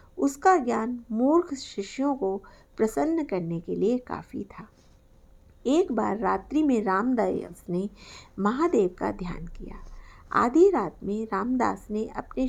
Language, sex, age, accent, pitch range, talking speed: Hindi, female, 50-69, native, 200-290 Hz, 130 wpm